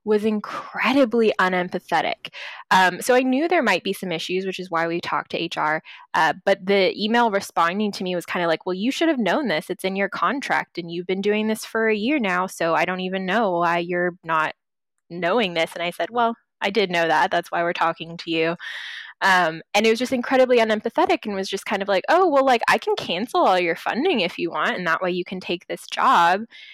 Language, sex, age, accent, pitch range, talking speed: English, female, 20-39, American, 180-250 Hz, 240 wpm